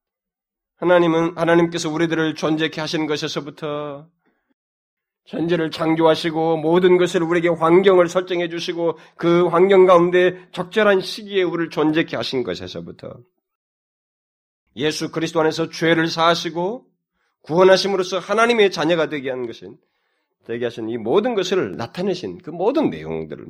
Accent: native